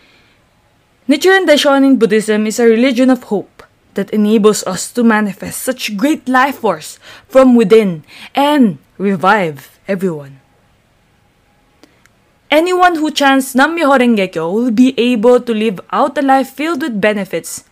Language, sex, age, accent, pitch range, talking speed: English, female, 20-39, Filipino, 195-265 Hz, 130 wpm